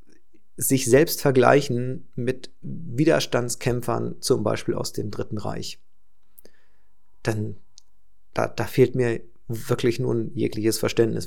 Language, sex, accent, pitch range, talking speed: German, male, German, 115-130 Hz, 105 wpm